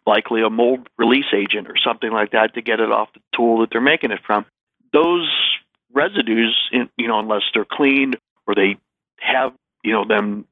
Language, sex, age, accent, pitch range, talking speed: English, male, 50-69, American, 115-135 Hz, 190 wpm